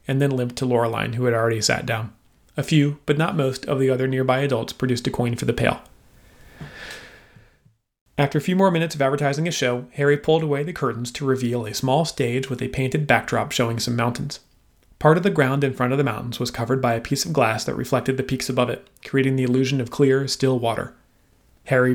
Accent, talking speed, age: American, 225 wpm, 30-49